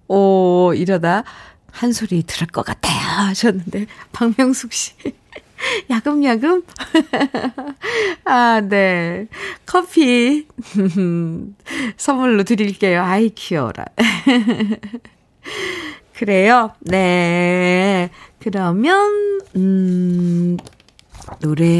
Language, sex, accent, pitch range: Korean, female, native, 180-265 Hz